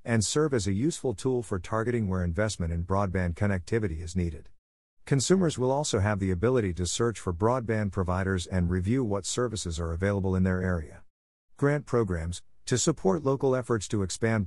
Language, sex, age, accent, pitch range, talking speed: English, male, 50-69, American, 90-115 Hz, 180 wpm